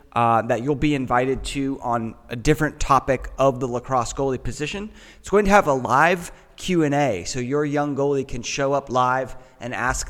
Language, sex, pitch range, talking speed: English, male, 125-150 Hz, 190 wpm